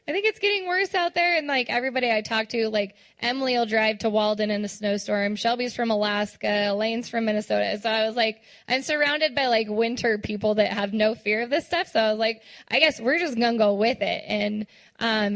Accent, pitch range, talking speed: American, 220-290 Hz, 235 wpm